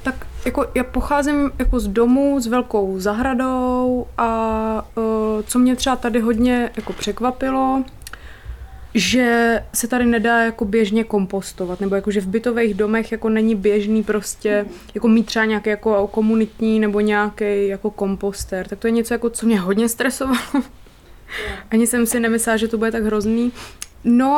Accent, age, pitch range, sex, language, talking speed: native, 20-39, 210-240 Hz, female, Czech, 160 wpm